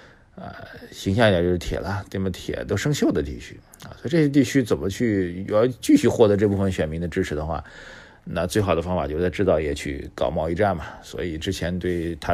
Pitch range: 85-105 Hz